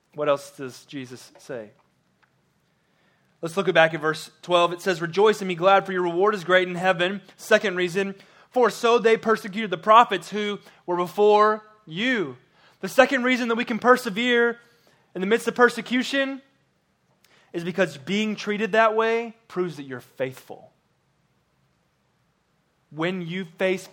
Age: 20-39